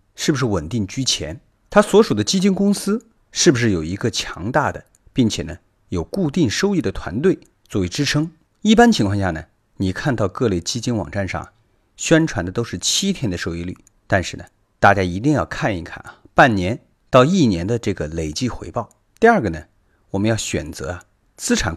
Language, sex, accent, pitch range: Chinese, male, native, 95-145 Hz